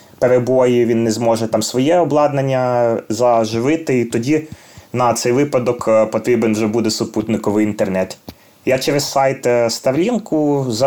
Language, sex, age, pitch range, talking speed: Ukrainian, male, 20-39, 115-140 Hz, 120 wpm